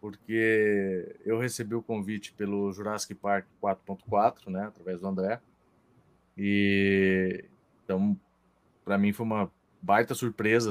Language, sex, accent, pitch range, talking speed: Portuguese, male, Brazilian, 100-130 Hz, 120 wpm